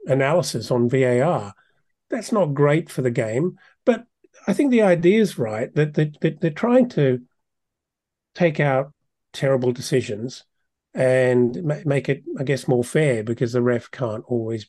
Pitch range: 125-160 Hz